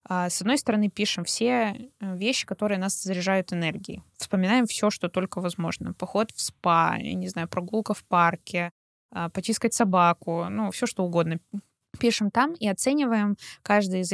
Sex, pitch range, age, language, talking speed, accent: female, 175-220 Hz, 20-39, Russian, 150 wpm, native